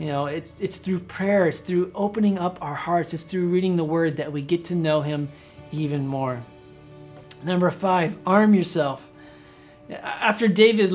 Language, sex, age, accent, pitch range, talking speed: English, male, 40-59, American, 170-205 Hz, 170 wpm